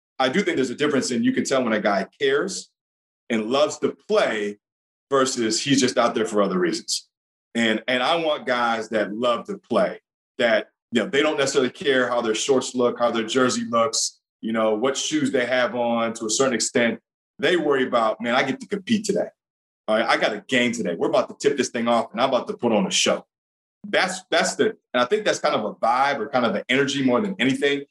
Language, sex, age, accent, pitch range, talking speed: English, male, 30-49, American, 120-155 Hz, 240 wpm